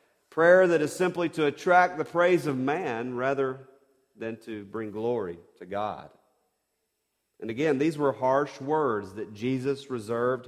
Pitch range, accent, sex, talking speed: 125-150 Hz, American, male, 150 wpm